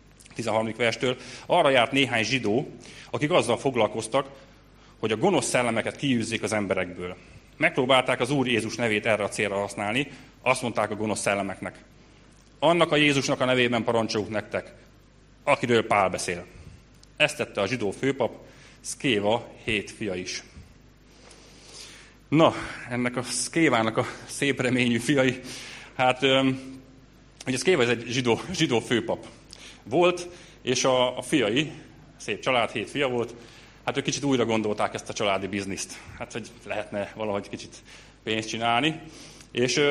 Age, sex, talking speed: 30-49, male, 140 wpm